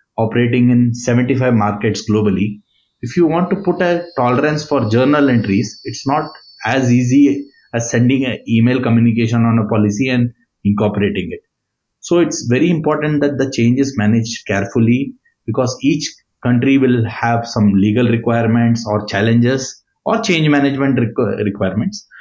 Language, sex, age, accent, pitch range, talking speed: English, male, 20-39, Indian, 115-140 Hz, 145 wpm